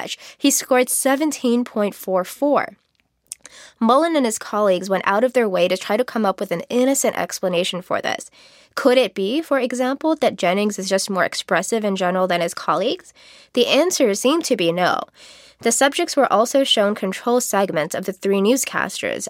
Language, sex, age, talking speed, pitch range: English, female, 20-39, 175 wpm, 195-255 Hz